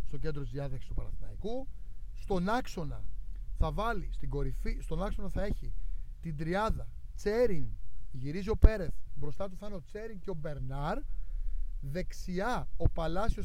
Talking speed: 145 wpm